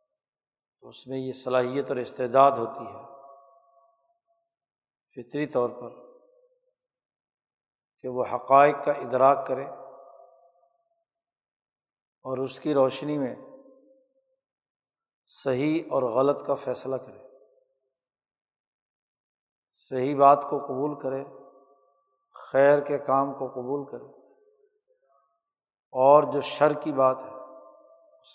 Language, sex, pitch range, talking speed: Urdu, male, 135-225 Hz, 100 wpm